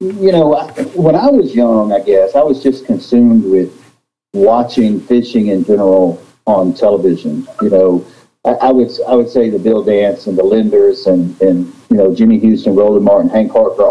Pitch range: 100-150 Hz